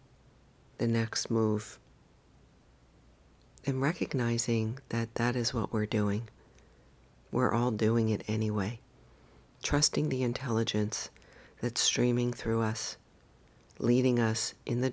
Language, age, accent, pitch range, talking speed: English, 50-69, American, 110-125 Hz, 110 wpm